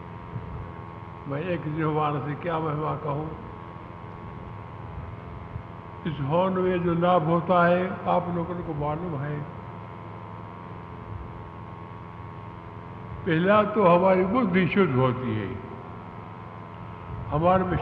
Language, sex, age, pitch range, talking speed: Hindi, male, 60-79, 105-170 Hz, 95 wpm